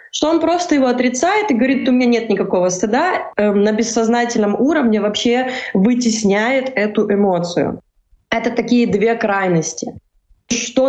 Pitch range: 205-240 Hz